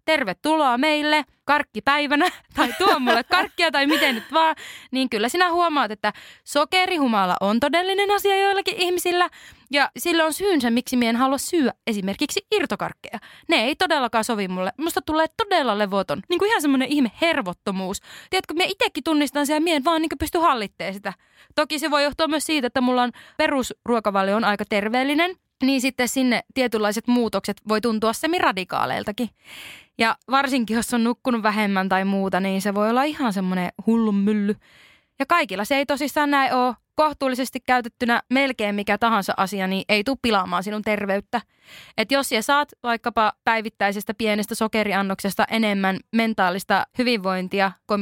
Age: 20-39